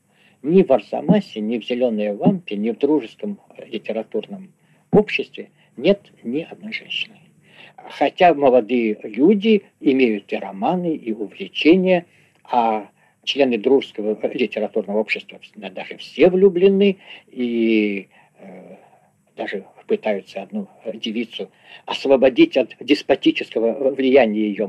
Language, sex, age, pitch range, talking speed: Russian, male, 50-69, 110-185 Hz, 105 wpm